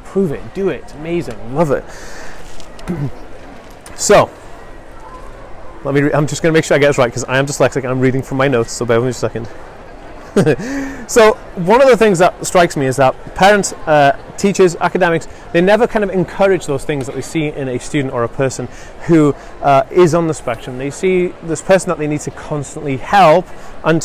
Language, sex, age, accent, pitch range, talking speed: English, male, 30-49, British, 140-200 Hz, 205 wpm